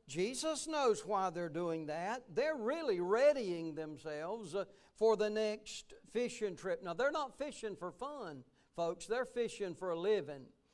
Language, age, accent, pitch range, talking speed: English, 60-79, American, 175-230 Hz, 155 wpm